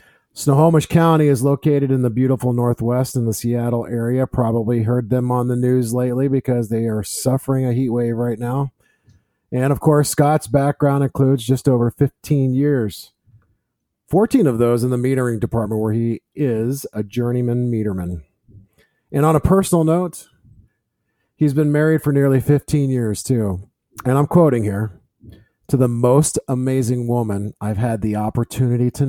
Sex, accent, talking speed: male, American, 160 wpm